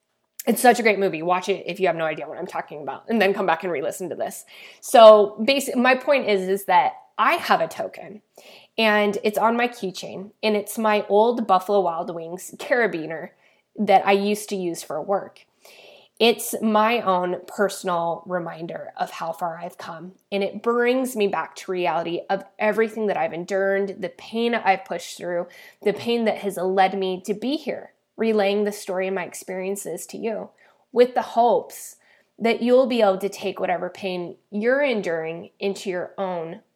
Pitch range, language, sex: 185-230 Hz, English, female